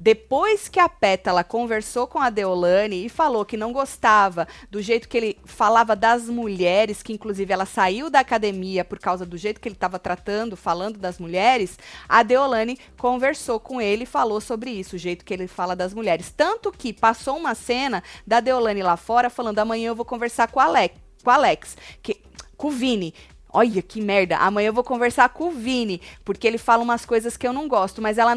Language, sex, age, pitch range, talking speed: Portuguese, female, 20-39, 190-250 Hz, 200 wpm